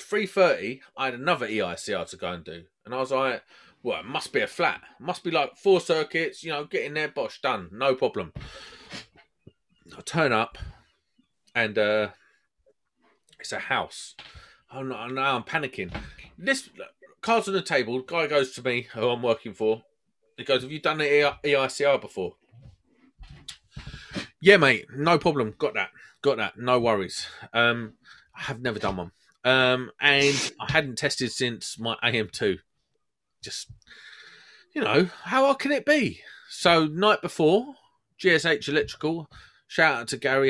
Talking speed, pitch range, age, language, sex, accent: 165 wpm, 115-170 Hz, 30-49, English, male, British